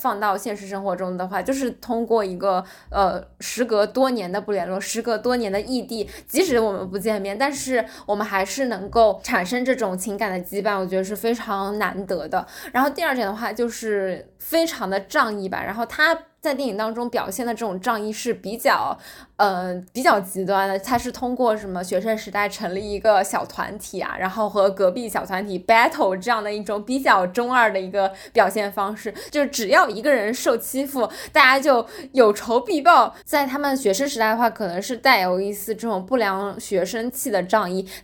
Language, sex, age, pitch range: Chinese, female, 10-29, 200-245 Hz